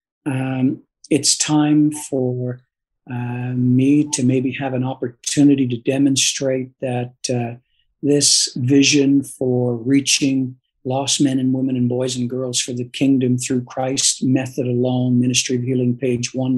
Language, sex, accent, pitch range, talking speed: English, male, American, 125-145 Hz, 140 wpm